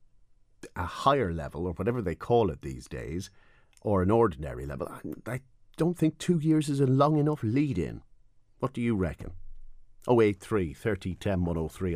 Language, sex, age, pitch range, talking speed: English, male, 50-69, 85-115 Hz, 160 wpm